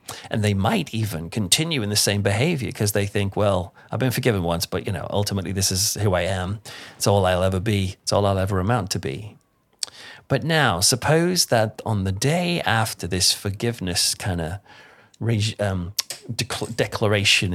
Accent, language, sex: British, English, male